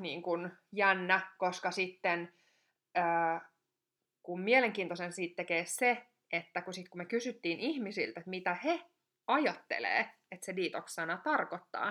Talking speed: 125 wpm